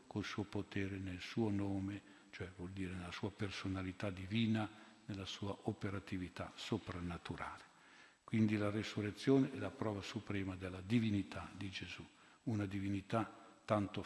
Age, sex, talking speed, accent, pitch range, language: 50-69, male, 130 wpm, native, 95-120 Hz, Italian